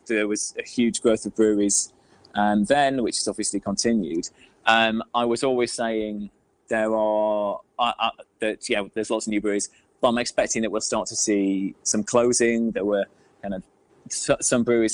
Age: 20-39